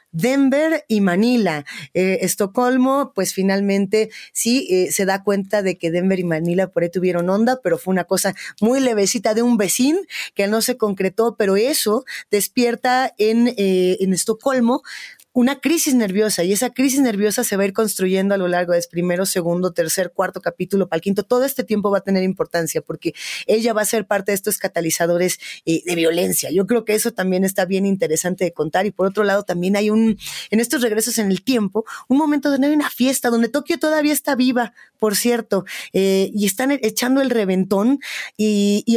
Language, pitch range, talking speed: Spanish, 185-245 Hz, 195 wpm